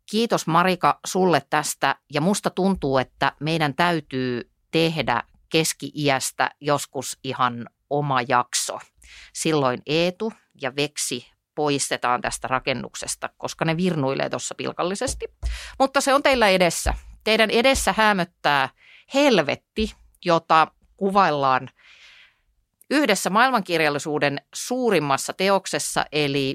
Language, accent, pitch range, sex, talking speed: Finnish, native, 130-180 Hz, female, 100 wpm